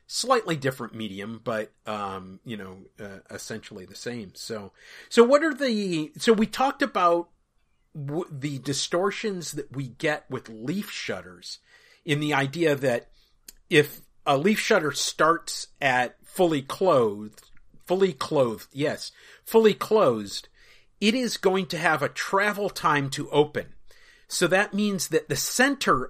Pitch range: 125-180 Hz